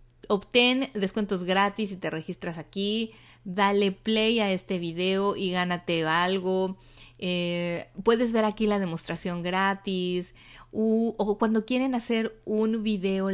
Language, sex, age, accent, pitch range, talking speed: Spanish, female, 30-49, Mexican, 175-205 Hz, 130 wpm